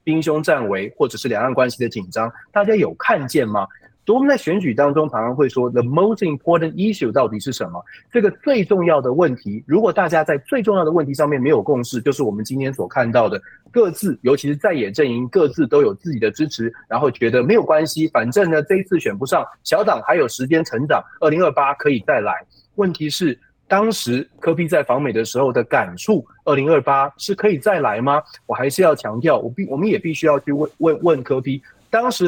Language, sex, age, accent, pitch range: Chinese, male, 30-49, native, 130-195 Hz